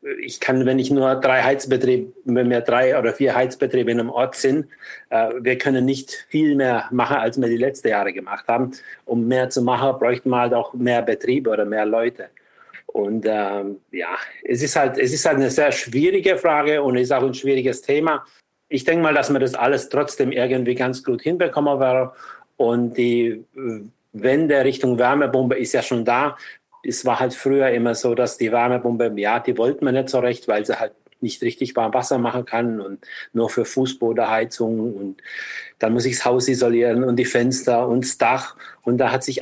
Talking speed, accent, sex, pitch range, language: 200 wpm, German, male, 115-130 Hz, German